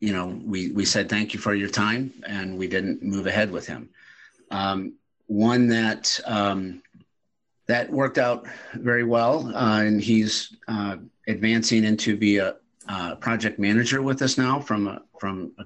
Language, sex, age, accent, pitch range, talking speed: English, male, 50-69, American, 105-120 Hz, 170 wpm